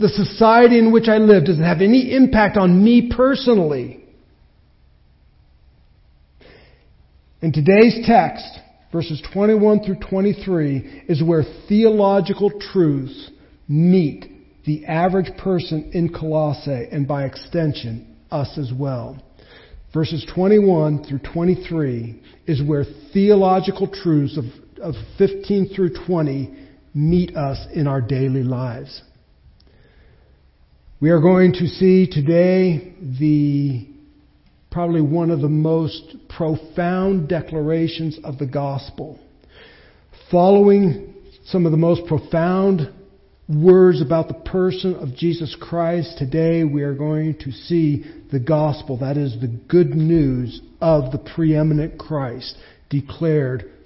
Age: 50-69